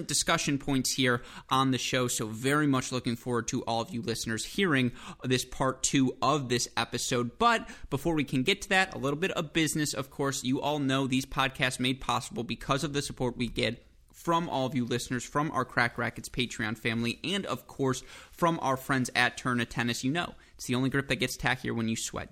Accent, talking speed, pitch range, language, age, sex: American, 220 wpm, 125-155 Hz, English, 30-49, male